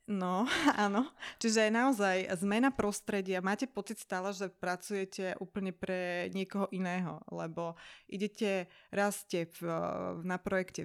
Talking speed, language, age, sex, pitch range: 105 wpm, Slovak, 30-49, female, 165-200 Hz